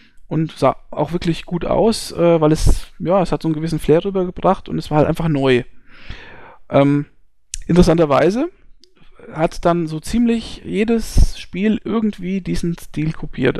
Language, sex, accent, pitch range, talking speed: German, male, German, 145-195 Hz, 155 wpm